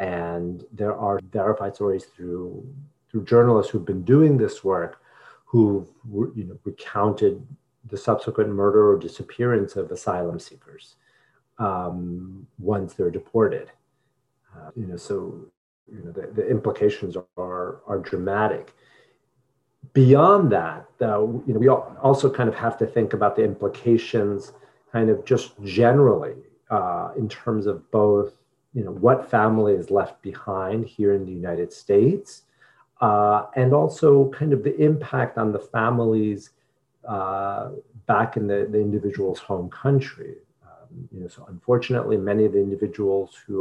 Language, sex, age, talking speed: English, male, 40-59, 145 wpm